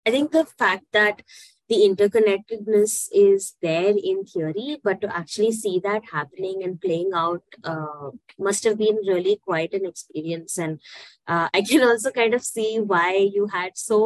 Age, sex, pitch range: 20-39, female, 175-215 Hz